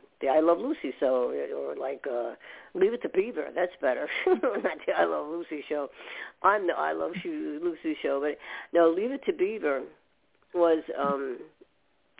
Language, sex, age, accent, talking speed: English, female, 50-69, American, 165 wpm